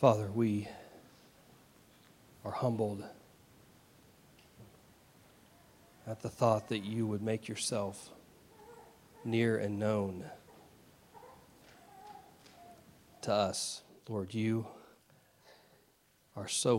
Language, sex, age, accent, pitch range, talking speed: English, male, 40-59, American, 100-120 Hz, 75 wpm